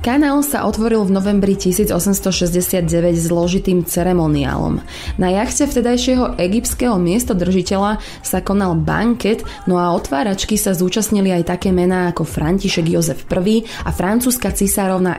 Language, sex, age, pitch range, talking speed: Slovak, female, 20-39, 175-225 Hz, 125 wpm